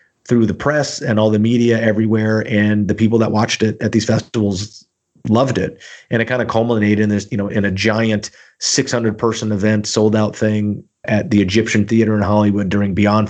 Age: 30-49